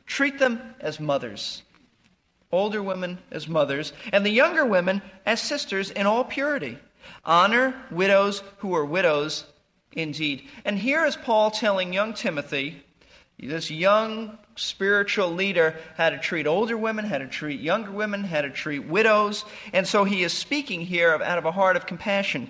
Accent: American